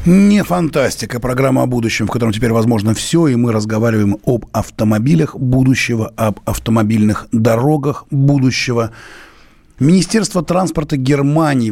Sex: male